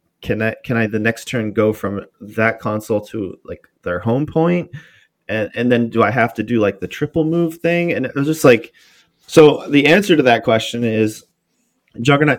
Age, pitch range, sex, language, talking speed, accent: 20-39, 105-140 Hz, male, English, 200 wpm, American